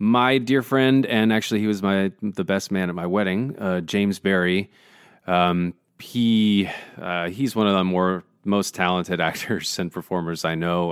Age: 30-49